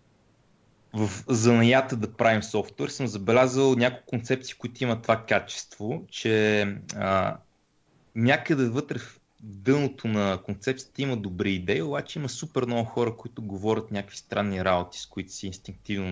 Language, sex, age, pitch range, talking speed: Bulgarian, male, 30-49, 95-120 Hz, 140 wpm